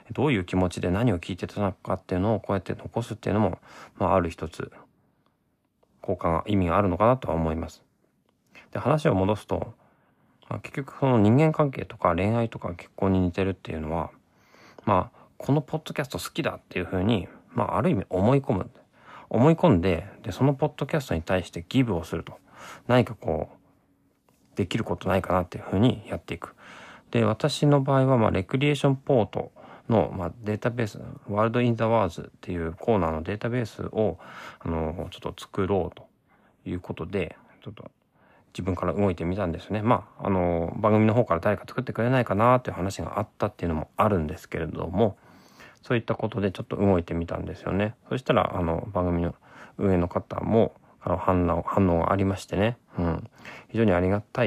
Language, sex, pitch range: Japanese, male, 90-120 Hz